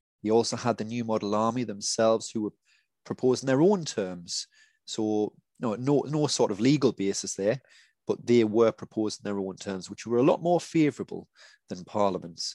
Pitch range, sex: 100-120 Hz, male